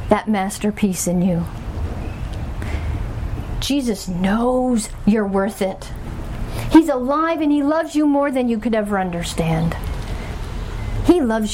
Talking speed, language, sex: 120 wpm, English, female